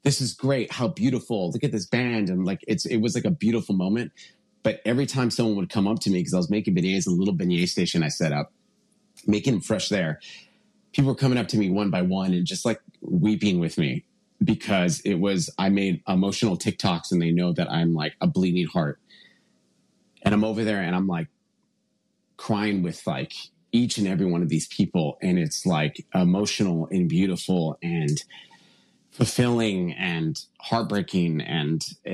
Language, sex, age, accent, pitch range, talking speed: English, male, 30-49, American, 90-125 Hz, 190 wpm